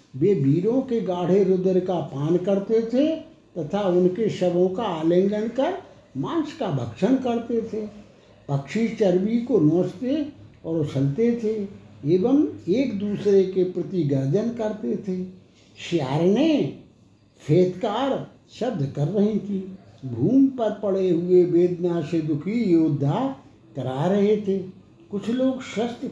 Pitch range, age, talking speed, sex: 150-230 Hz, 60-79, 130 wpm, male